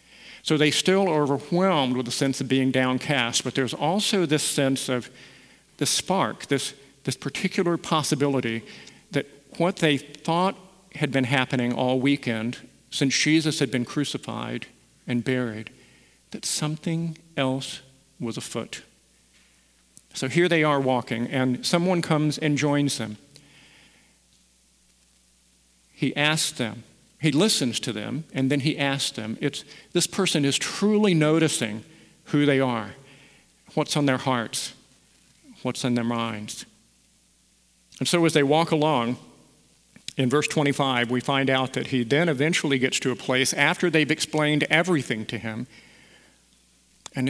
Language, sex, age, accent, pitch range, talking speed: English, male, 50-69, American, 120-150 Hz, 140 wpm